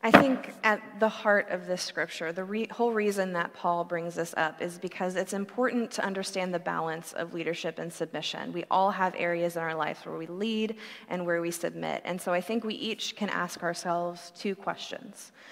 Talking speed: 205 wpm